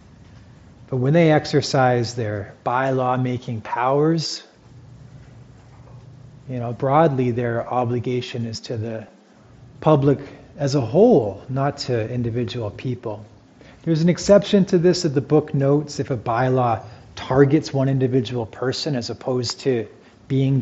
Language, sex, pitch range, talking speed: English, male, 120-145 Hz, 120 wpm